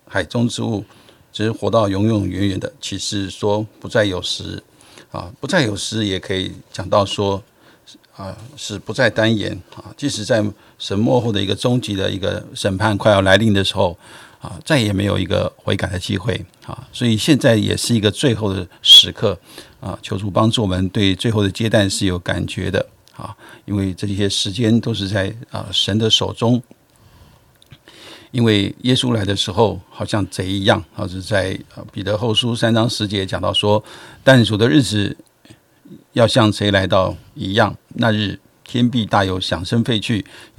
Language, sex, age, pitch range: Chinese, male, 50-69, 100-115 Hz